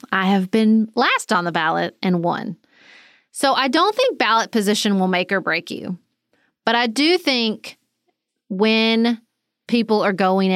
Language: English